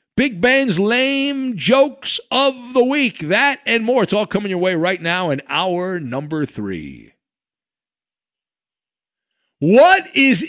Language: English